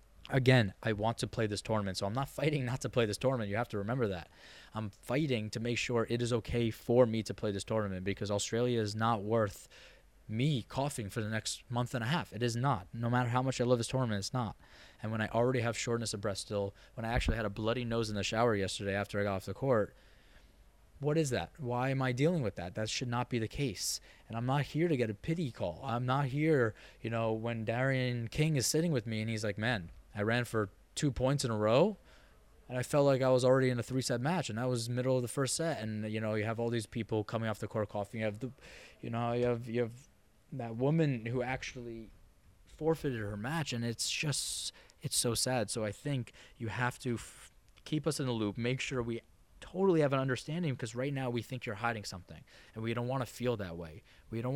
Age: 20-39